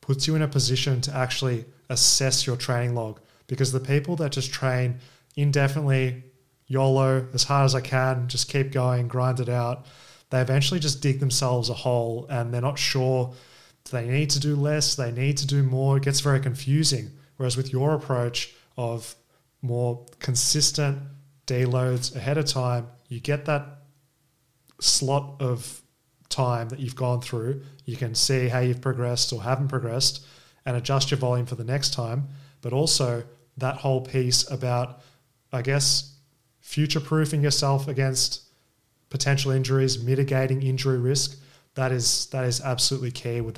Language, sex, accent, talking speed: English, male, Australian, 160 wpm